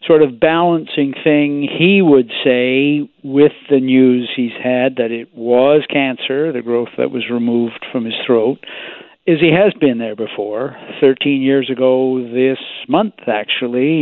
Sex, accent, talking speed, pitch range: male, American, 155 wpm, 135-160 Hz